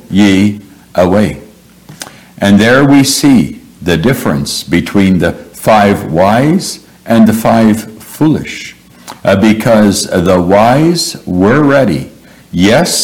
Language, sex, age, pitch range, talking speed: English, male, 60-79, 100-125 Hz, 105 wpm